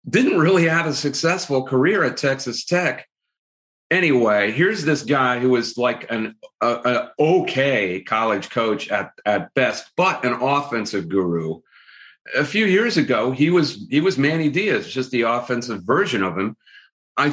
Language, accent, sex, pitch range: English, American, male, 115-135 Hz